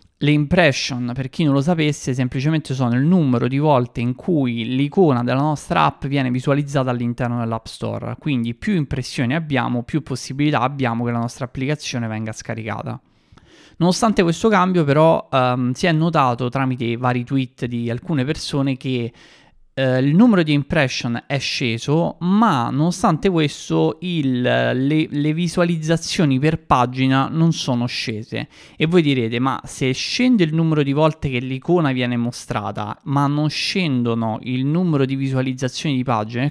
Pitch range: 125-155 Hz